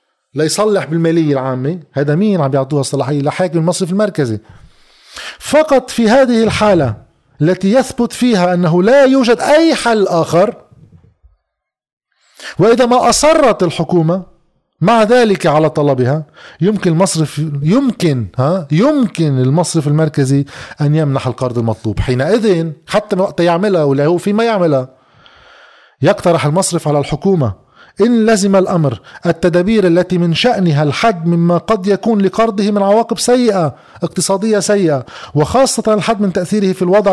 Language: Arabic